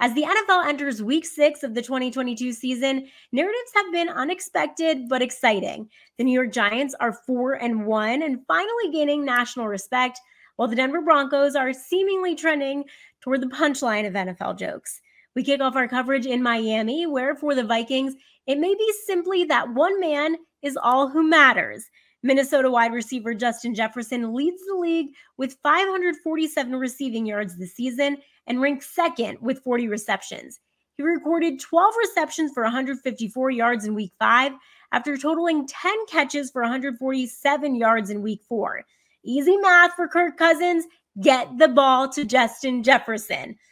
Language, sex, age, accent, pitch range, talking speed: English, female, 20-39, American, 240-310 Hz, 160 wpm